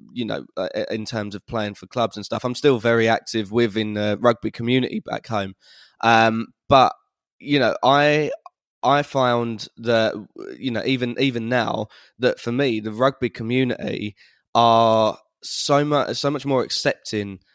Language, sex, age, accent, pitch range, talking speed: English, male, 20-39, British, 110-130 Hz, 155 wpm